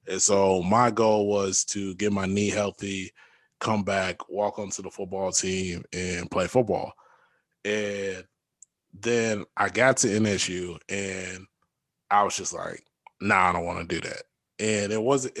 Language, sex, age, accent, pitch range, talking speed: English, male, 20-39, American, 95-110 Hz, 160 wpm